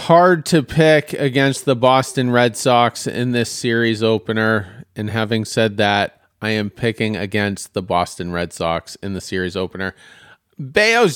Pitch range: 110-135 Hz